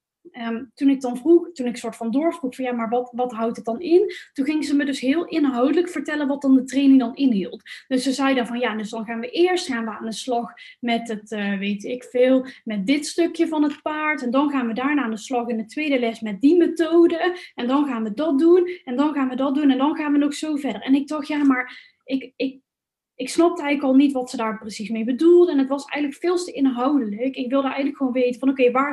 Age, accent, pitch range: 10-29, Dutch, 240-295 Hz